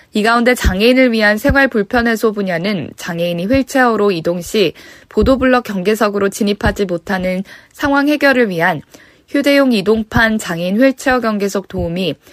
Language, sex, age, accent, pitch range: Korean, female, 20-39, native, 180-240 Hz